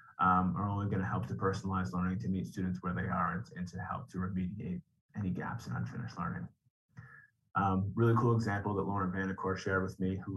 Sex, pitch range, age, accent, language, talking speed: male, 95-110 Hz, 30-49, American, English, 215 wpm